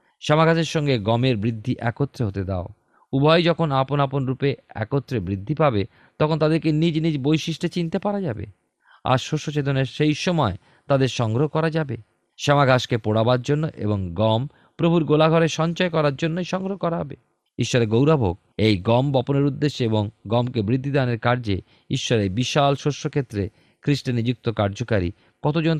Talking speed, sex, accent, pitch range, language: 140 wpm, male, native, 105-145 Hz, Bengali